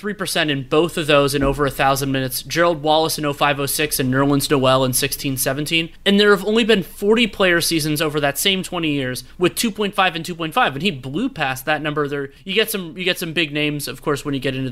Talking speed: 230 wpm